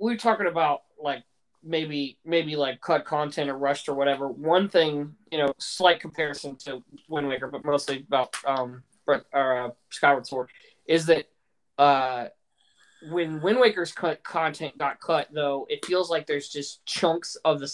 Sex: male